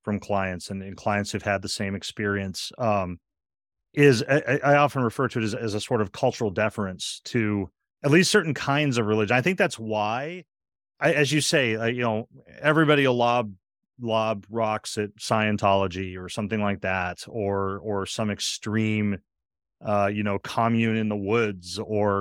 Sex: male